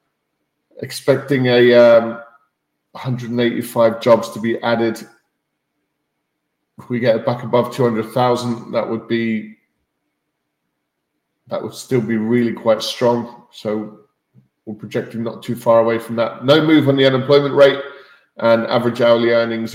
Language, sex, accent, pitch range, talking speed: English, male, British, 115-130 Hz, 130 wpm